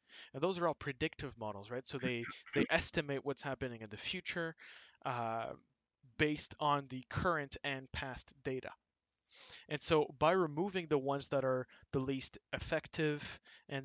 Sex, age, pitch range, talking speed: male, 20-39, 115-145 Hz, 155 wpm